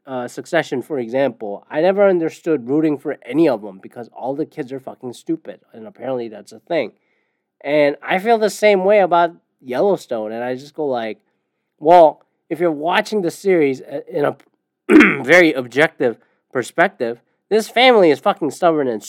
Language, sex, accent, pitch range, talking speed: English, male, American, 135-195 Hz, 170 wpm